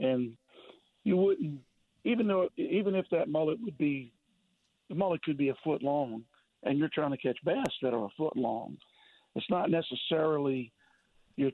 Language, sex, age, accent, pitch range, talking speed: English, male, 50-69, American, 135-155 Hz, 170 wpm